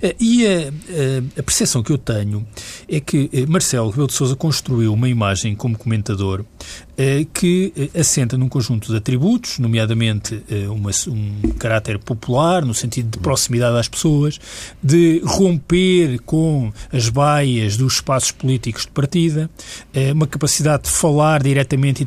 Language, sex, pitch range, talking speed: Portuguese, male, 115-150 Hz, 135 wpm